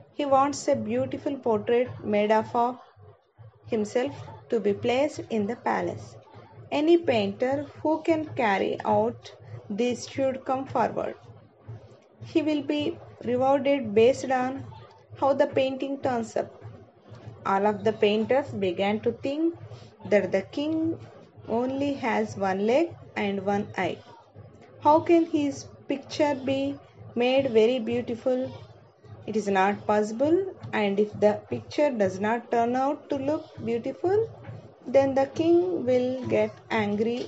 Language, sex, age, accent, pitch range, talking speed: Telugu, female, 20-39, native, 210-275 Hz, 130 wpm